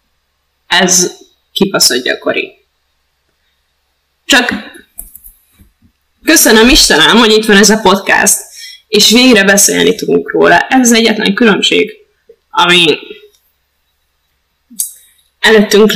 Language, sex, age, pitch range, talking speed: Hungarian, female, 10-29, 175-220 Hz, 85 wpm